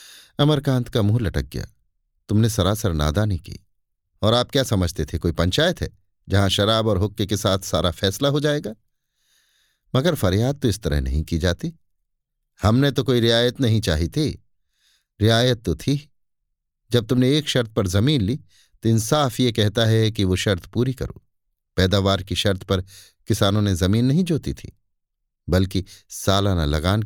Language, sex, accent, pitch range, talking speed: Hindi, male, native, 95-120 Hz, 165 wpm